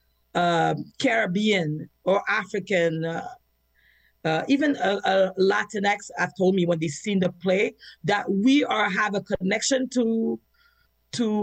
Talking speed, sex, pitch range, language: 140 wpm, female, 175-210 Hz, English